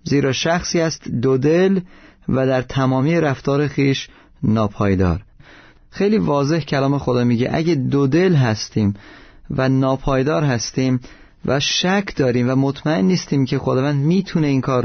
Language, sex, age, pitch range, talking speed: Persian, male, 30-49, 120-145 Hz, 135 wpm